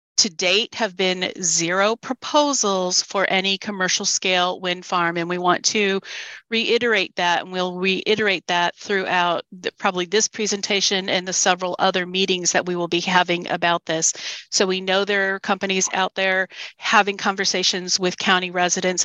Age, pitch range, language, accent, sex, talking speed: 40-59, 180-200 Hz, English, American, female, 160 wpm